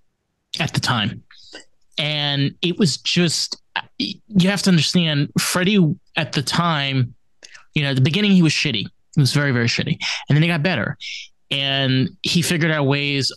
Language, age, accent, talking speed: English, 20-39, American, 170 wpm